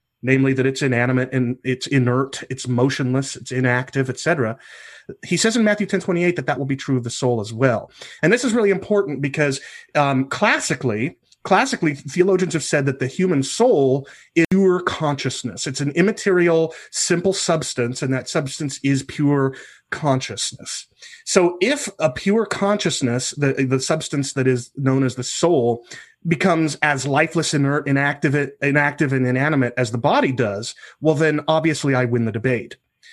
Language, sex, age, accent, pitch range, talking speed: English, male, 30-49, American, 130-165 Hz, 165 wpm